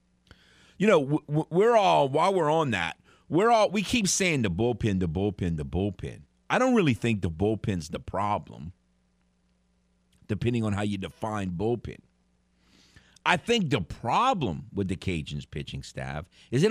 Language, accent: English, American